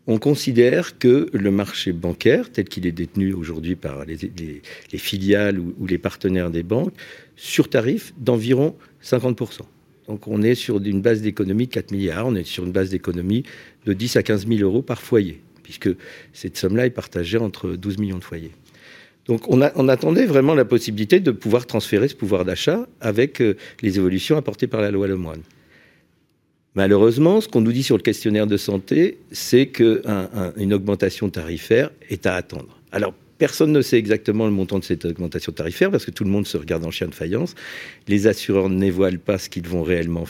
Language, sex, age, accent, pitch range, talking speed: French, male, 50-69, French, 95-120 Hz, 195 wpm